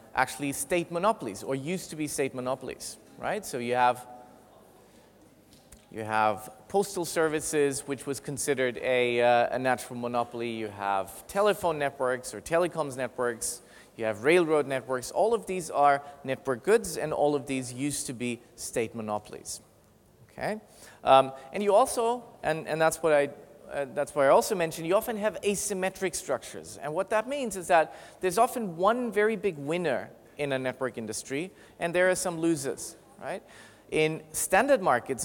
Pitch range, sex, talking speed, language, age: 130-185 Hz, male, 165 wpm, English, 30-49